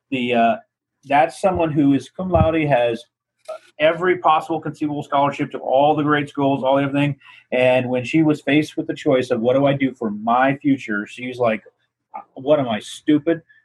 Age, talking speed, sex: 40-59, 185 wpm, male